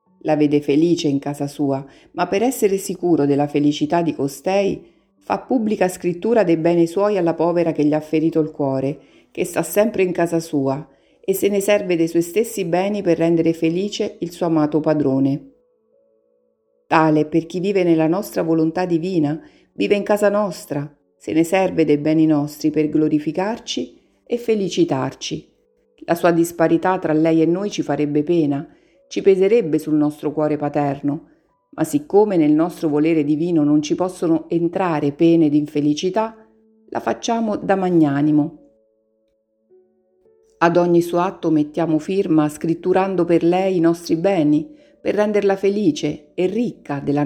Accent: native